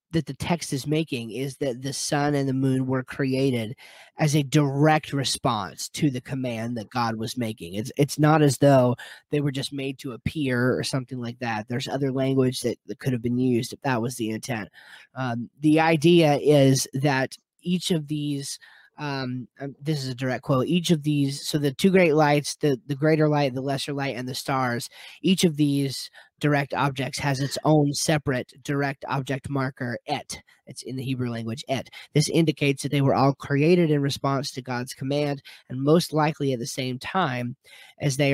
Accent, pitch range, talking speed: American, 130-150 Hz, 200 wpm